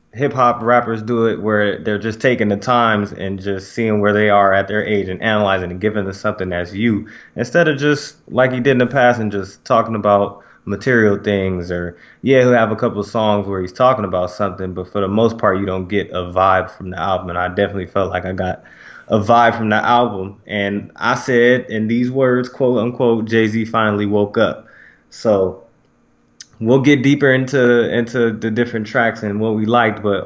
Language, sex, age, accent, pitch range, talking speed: English, male, 20-39, American, 100-120 Hz, 210 wpm